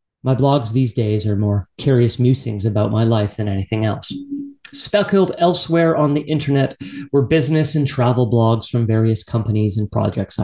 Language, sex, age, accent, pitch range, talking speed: English, male, 30-49, American, 115-145 Hz, 165 wpm